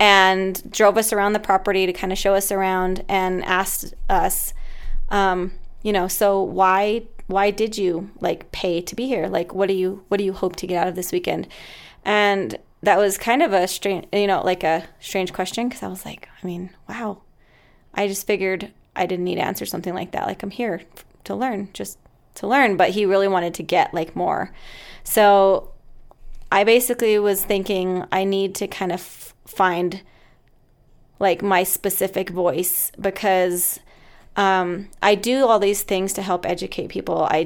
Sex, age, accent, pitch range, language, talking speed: female, 20-39, American, 185-210 Hz, English, 185 wpm